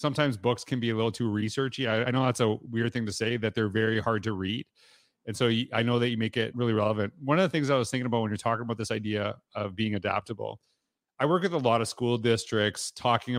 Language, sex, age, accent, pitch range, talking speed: English, male, 30-49, American, 110-135 Hz, 260 wpm